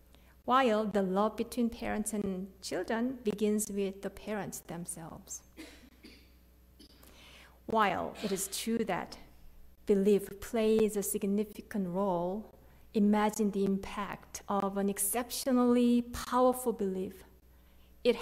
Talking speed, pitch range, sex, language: 100 wpm, 180-220 Hz, female, English